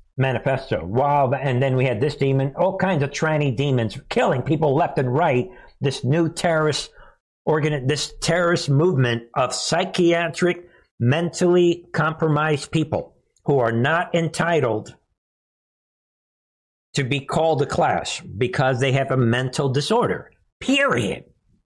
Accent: American